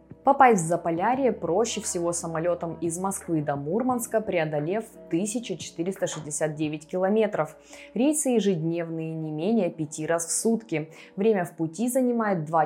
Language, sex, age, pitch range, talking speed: Russian, female, 20-39, 155-220 Hz, 125 wpm